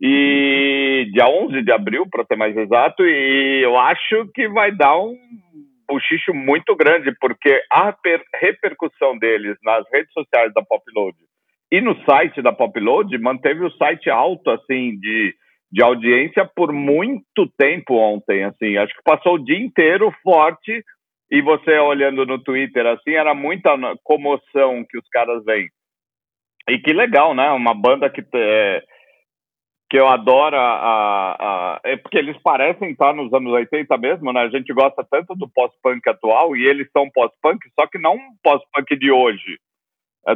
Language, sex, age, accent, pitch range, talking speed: Portuguese, male, 50-69, Brazilian, 120-175 Hz, 170 wpm